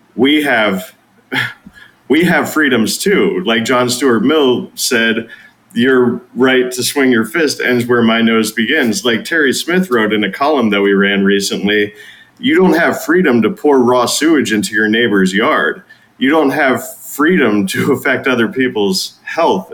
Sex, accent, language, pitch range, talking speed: male, American, English, 100-120 Hz, 165 wpm